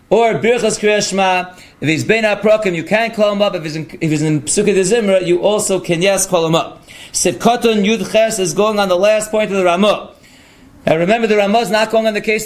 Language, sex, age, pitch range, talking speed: English, male, 40-59, 180-215 Hz, 215 wpm